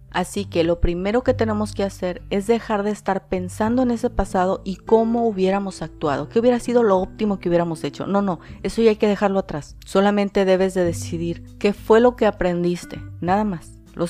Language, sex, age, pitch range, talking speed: Spanish, female, 40-59, 175-210 Hz, 205 wpm